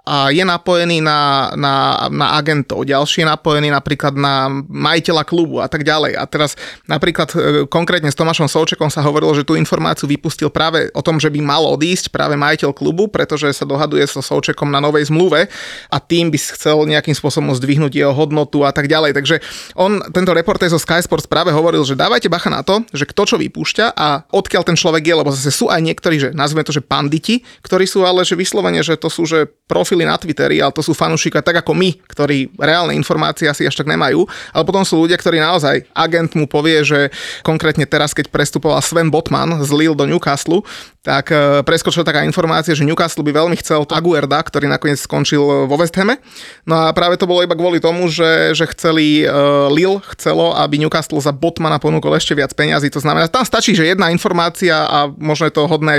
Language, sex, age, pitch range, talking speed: Slovak, male, 30-49, 145-170 Hz, 195 wpm